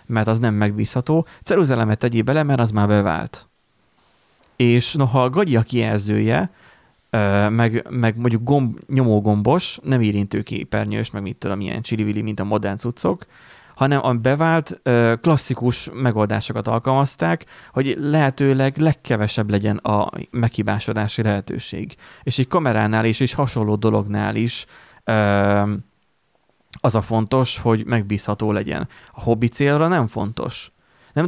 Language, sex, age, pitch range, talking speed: Hungarian, male, 30-49, 105-125 Hz, 125 wpm